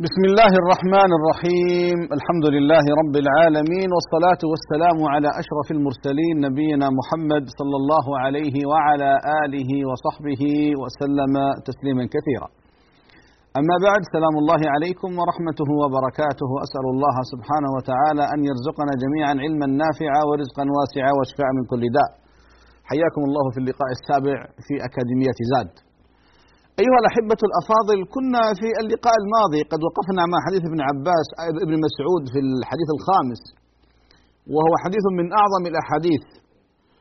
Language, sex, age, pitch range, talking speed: Arabic, male, 40-59, 140-175 Hz, 125 wpm